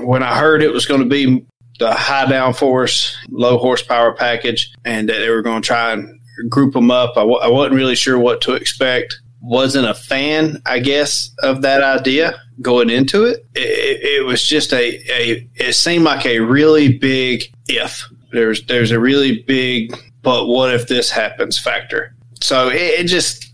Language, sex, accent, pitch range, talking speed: English, male, American, 120-135 Hz, 180 wpm